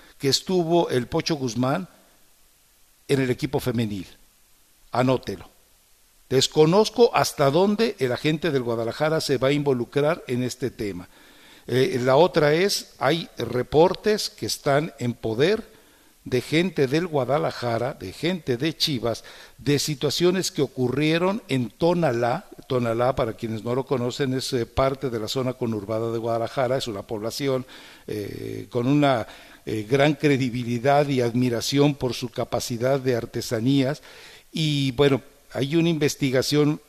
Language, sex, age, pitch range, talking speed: English, male, 60-79, 120-150 Hz, 135 wpm